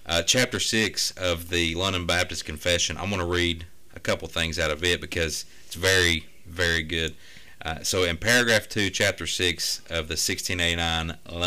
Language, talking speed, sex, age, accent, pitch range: English, 175 wpm, male, 30-49, American, 80-100 Hz